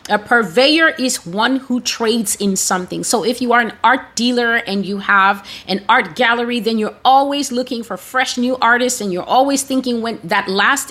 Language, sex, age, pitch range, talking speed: English, female, 30-49, 200-250 Hz, 200 wpm